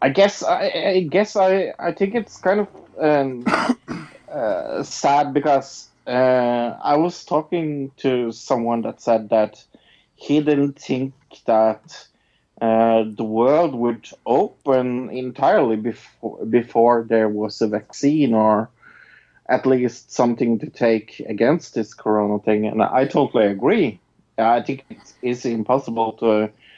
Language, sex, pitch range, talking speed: English, male, 105-125 Hz, 135 wpm